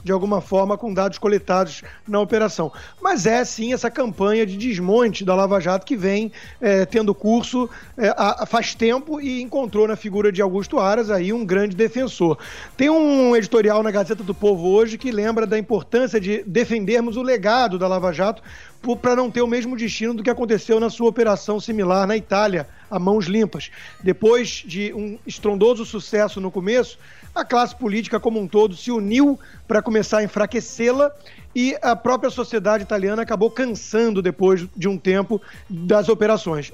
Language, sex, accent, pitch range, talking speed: Portuguese, male, Brazilian, 195-230 Hz, 170 wpm